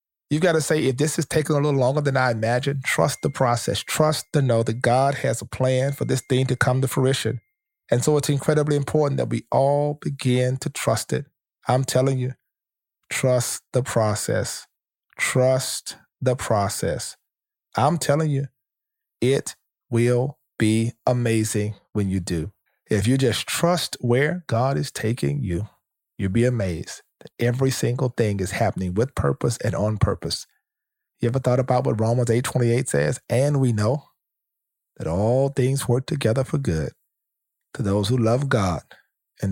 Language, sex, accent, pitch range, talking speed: English, male, American, 110-135 Hz, 165 wpm